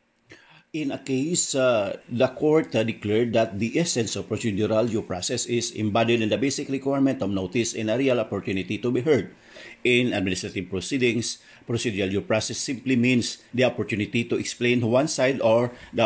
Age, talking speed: 50-69, 170 wpm